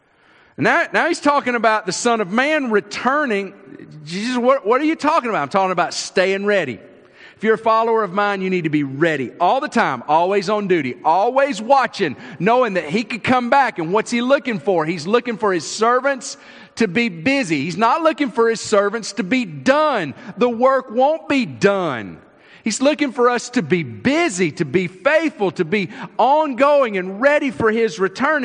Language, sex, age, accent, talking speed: English, male, 40-59, American, 195 wpm